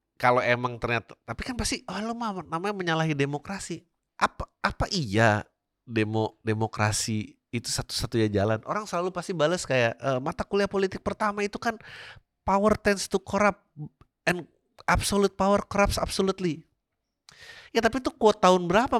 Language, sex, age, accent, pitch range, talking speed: Indonesian, male, 30-49, native, 115-190 Hz, 140 wpm